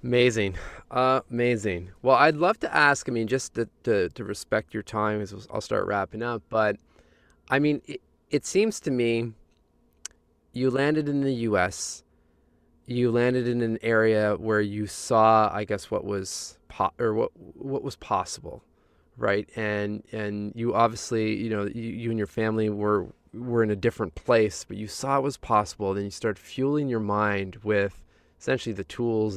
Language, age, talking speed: English, 20-39, 180 wpm